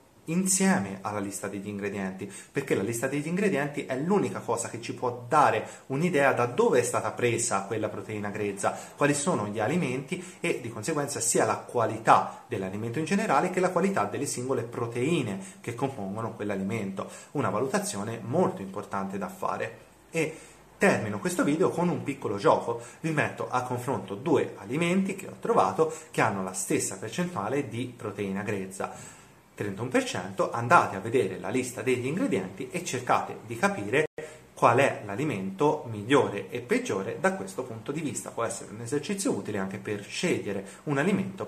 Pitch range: 105-145 Hz